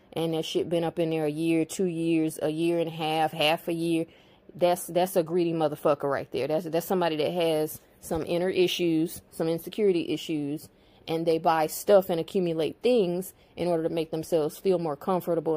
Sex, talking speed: female, 200 wpm